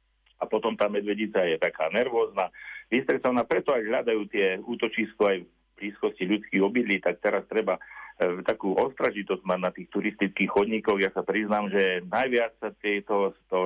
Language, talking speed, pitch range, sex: Slovak, 165 wpm, 95-115 Hz, male